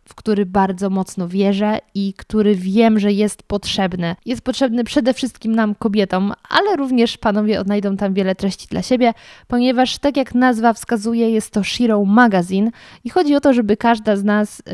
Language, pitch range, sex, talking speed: Polish, 195-235 Hz, female, 175 wpm